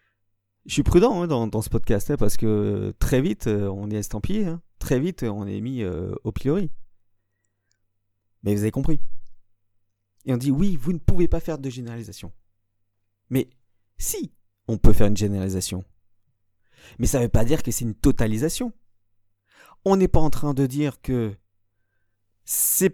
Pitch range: 100-140 Hz